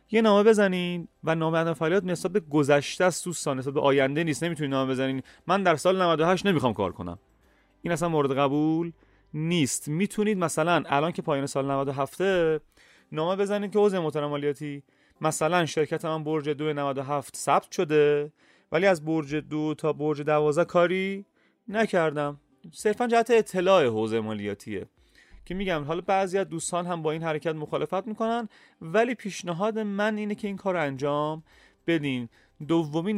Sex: male